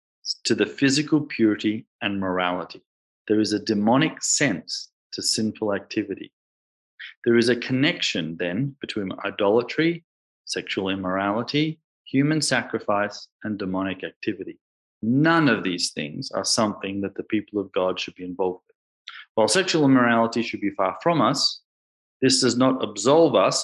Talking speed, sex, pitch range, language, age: 140 wpm, male, 95-125 Hz, English, 30-49